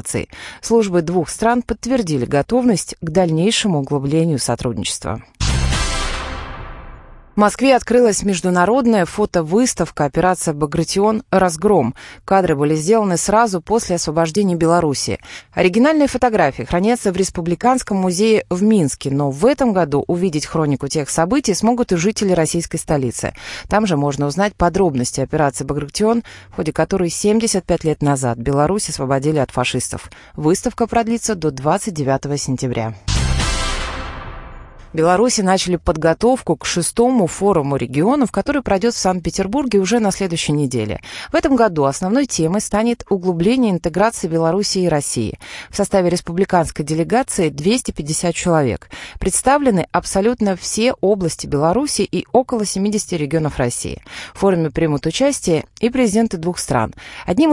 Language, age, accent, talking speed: Russian, 30-49, native, 125 wpm